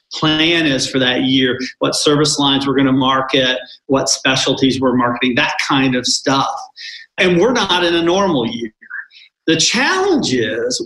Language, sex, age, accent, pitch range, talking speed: English, male, 40-59, American, 130-190 Hz, 165 wpm